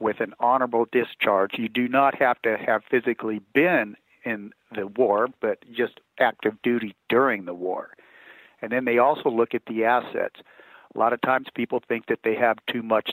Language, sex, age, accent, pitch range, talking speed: English, male, 50-69, American, 110-130 Hz, 185 wpm